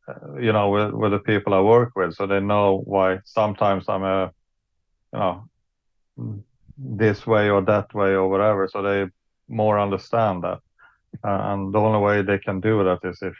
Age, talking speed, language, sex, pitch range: 30-49, 185 wpm, English, male, 95-115 Hz